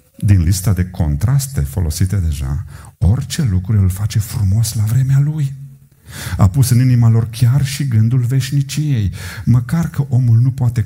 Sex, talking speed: male, 155 wpm